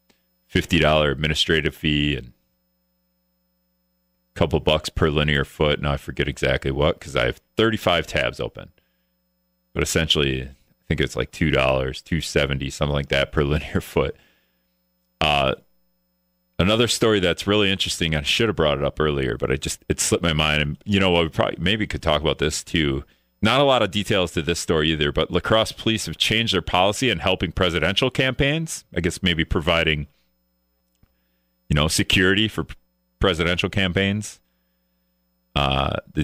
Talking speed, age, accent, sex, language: 170 wpm, 30-49, American, male, English